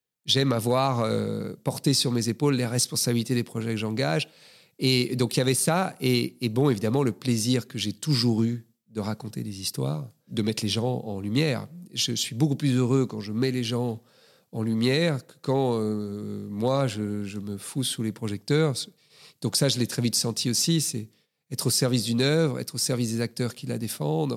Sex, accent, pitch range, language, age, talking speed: male, French, 120-155 Hz, French, 40-59, 205 wpm